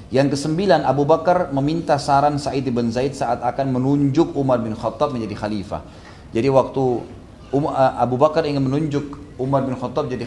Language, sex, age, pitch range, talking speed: Indonesian, male, 30-49, 115-145 Hz, 160 wpm